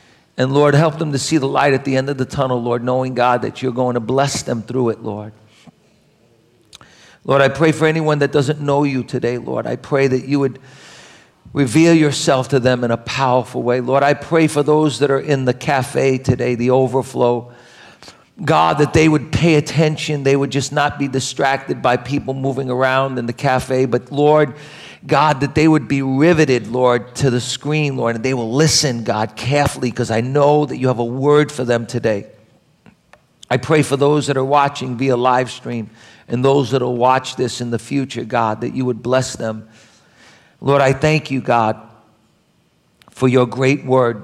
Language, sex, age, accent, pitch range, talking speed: English, male, 50-69, American, 120-145 Hz, 200 wpm